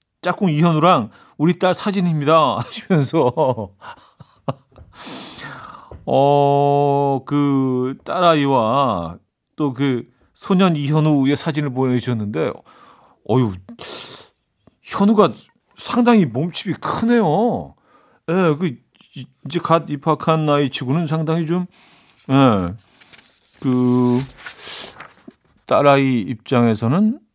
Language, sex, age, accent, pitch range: Korean, male, 40-59, native, 120-165 Hz